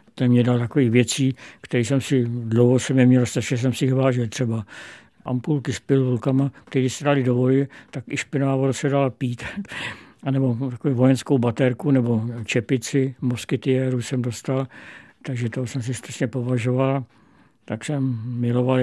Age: 60-79